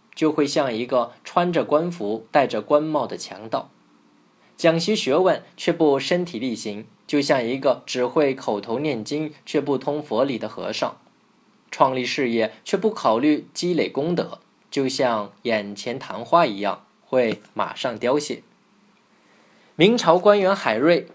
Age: 20-39